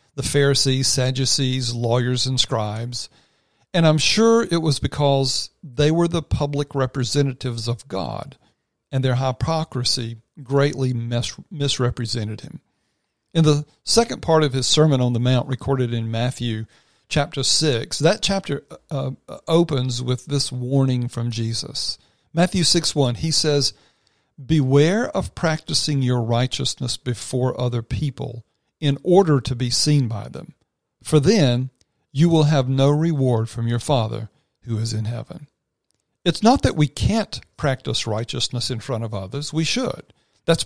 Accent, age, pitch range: American, 50-69, 120-155 Hz